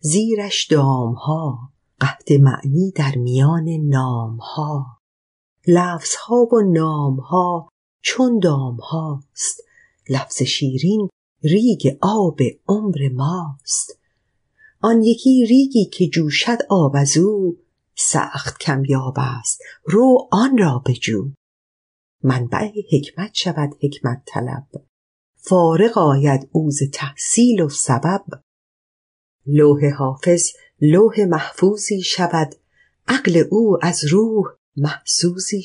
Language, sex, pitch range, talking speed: Persian, female, 140-190 Hz, 100 wpm